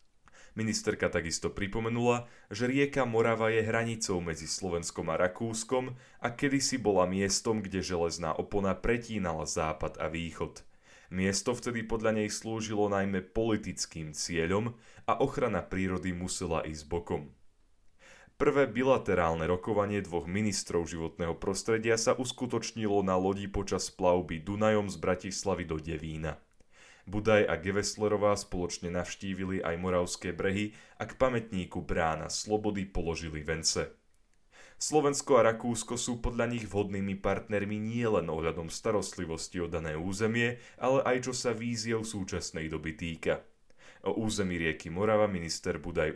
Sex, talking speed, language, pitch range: male, 130 wpm, Slovak, 85-115 Hz